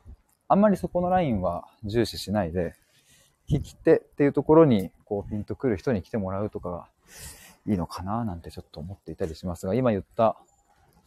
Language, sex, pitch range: Japanese, male, 90-130 Hz